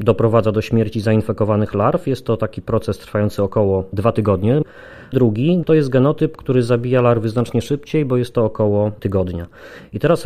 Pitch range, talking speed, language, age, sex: 110-135 Hz, 170 wpm, Polish, 30-49, male